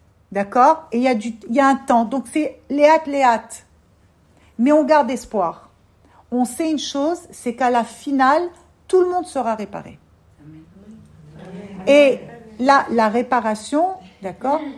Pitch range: 210-270 Hz